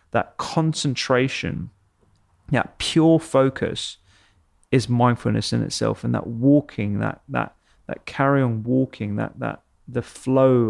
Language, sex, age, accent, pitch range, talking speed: English, male, 30-49, British, 110-130 Hz, 125 wpm